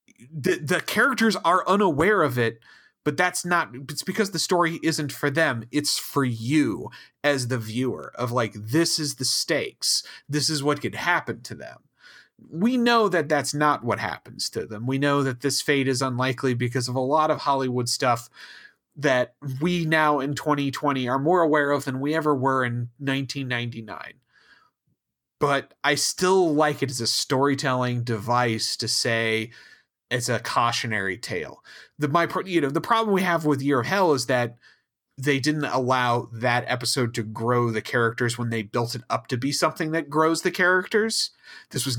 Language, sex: English, male